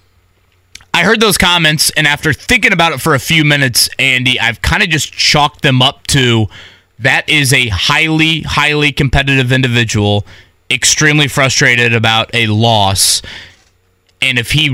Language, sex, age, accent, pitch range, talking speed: English, male, 20-39, American, 115-150 Hz, 150 wpm